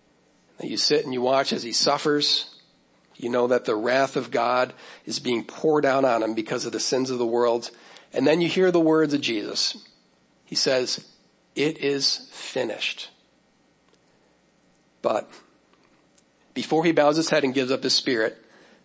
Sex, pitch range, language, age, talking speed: male, 125-155 Hz, English, 40-59, 165 wpm